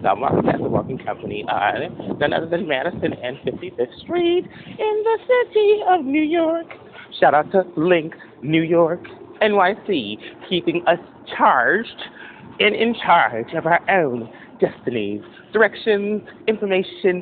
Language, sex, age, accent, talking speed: English, male, 30-49, American, 135 wpm